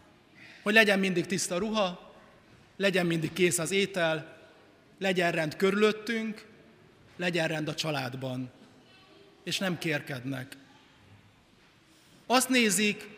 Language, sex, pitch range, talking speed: Hungarian, male, 155-210 Hz, 100 wpm